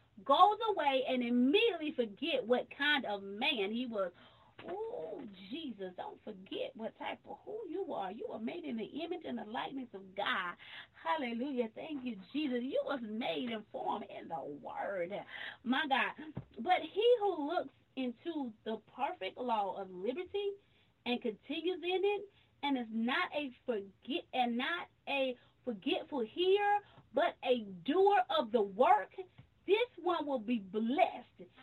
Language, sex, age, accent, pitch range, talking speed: English, female, 30-49, American, 200-285 Hz, 155 wpm